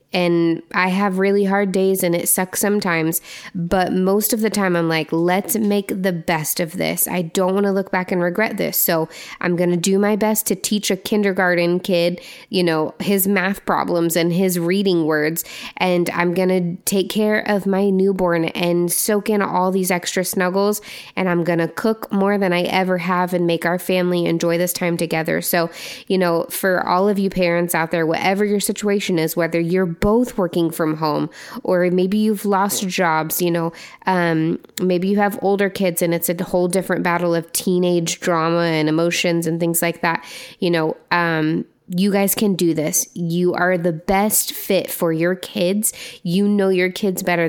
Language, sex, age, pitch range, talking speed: English, female, 20-39, 175-200 Hz, 195 wpm